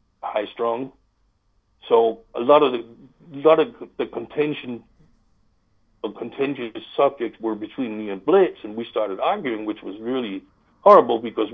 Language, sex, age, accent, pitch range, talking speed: English, male, 60-79, American, 110-155 Hz, 140 wpm